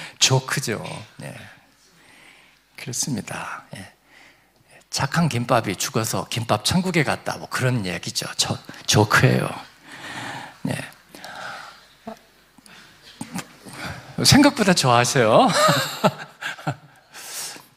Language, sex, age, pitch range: Korean, male, 50-69, 135-185 Hz